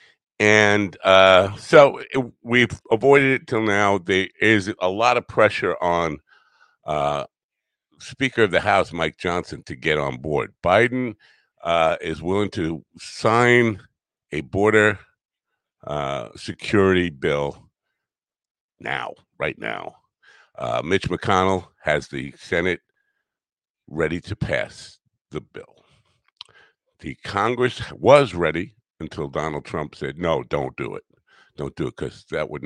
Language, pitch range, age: English, 80-120 Hz, 50-69